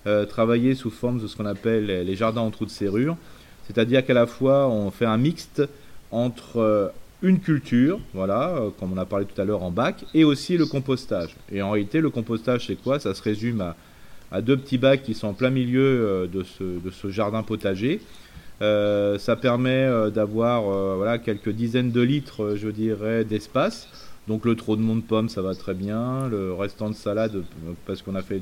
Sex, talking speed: male, 215 wpm